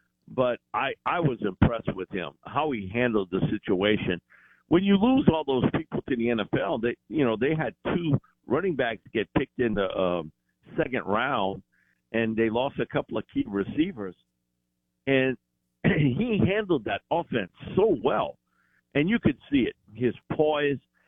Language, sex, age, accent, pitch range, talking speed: English, male, 50-69, American, 95-145 Hz, 160 wpm